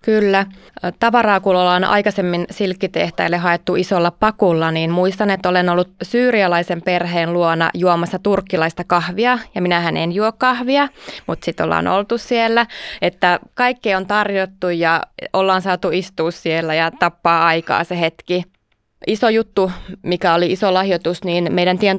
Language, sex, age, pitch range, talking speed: Finnish, female, 20-39, 170-195 Hz, 145 wpm